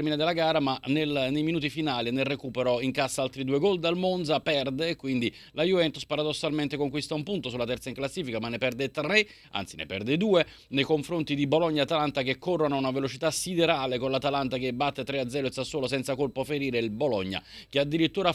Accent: native